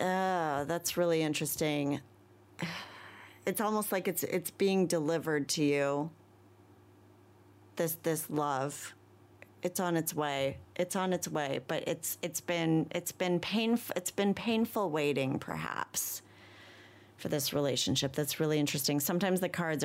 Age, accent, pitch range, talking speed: 30-49, American, 145-185 Hz, 135 wpm